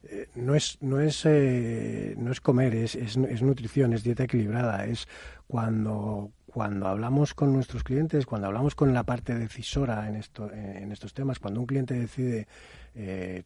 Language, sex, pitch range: Spanish, male, 110-145 Hz